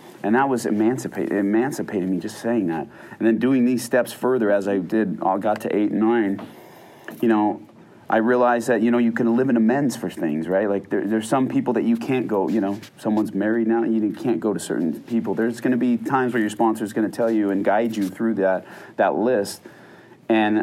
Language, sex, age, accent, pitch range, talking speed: English, male, 30-49, American, 100-120 Hz, 230 wpm